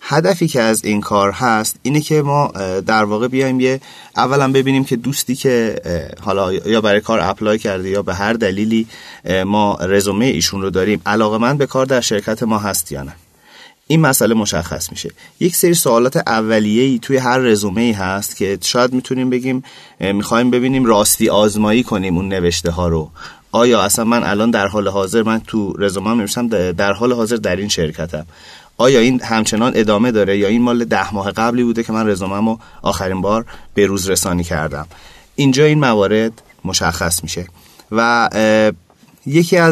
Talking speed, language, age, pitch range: 175 wpm, Persian, 30-49, 100-125 Hz